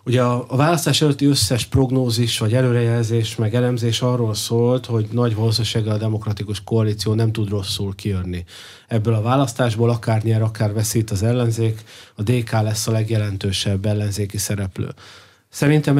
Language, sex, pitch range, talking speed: Hungarian, male, 110-125 Hz, 145 wpm